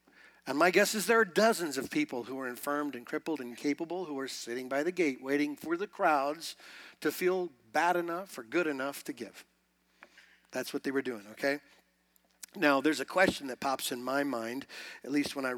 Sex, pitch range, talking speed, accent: male, 135-225 Hz, 210 wpm, American